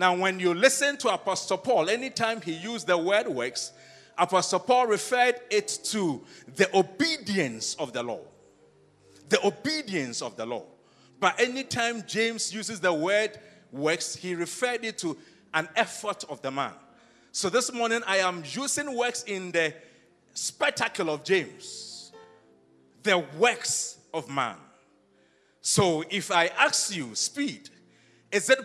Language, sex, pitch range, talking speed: English, male, 160-230 Hz, 145 wpm